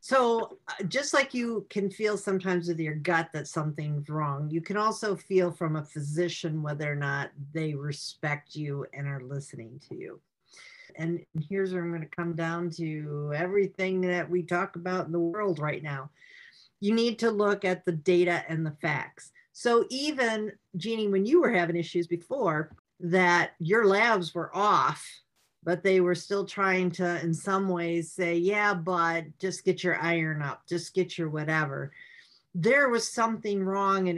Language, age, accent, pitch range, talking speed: English, 50-69, American, 165-200 Hz, 175 wpm